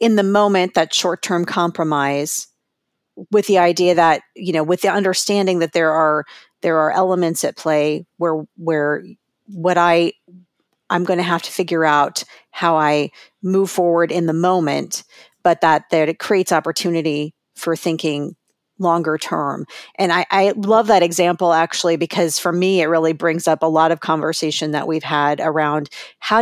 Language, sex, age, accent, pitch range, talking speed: English, female, 40-59, American, 160-185 Hz, 170 wpm